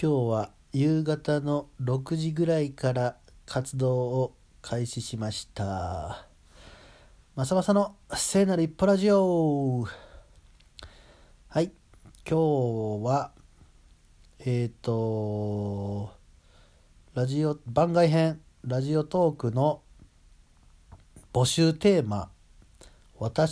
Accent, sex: native, male